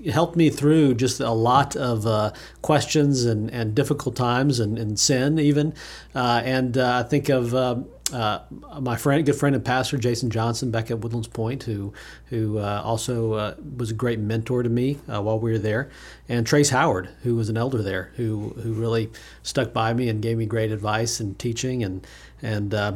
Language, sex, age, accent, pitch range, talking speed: English, male, 40-59, American, 115-145 Hz, 200 wpm